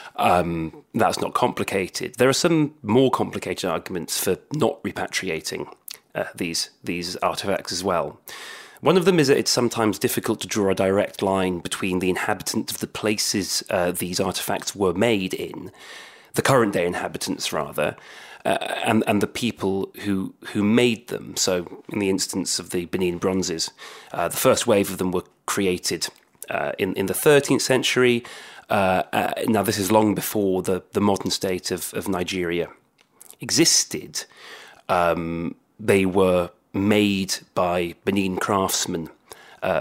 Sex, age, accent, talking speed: male, 30-49, British, 155 wpm